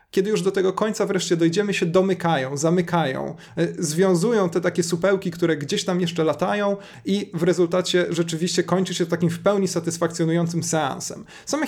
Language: Polish